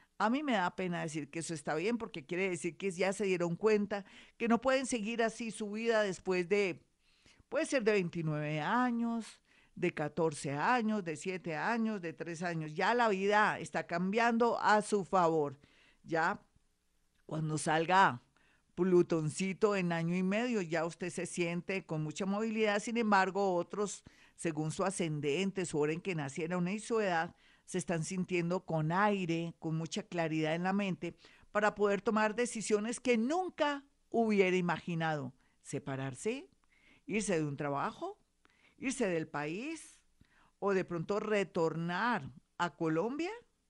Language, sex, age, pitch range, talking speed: Spanish, female, 50-69, 170-225 Hz, 155 wpm